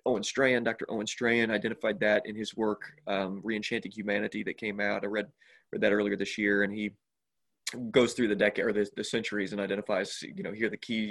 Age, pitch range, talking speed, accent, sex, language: 20-39, 105-115 Hz, 215 wpm, American, male, English